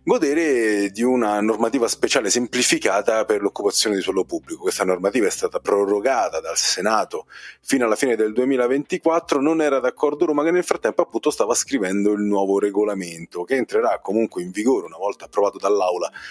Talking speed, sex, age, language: 165 wpm, male, 40-59, Italian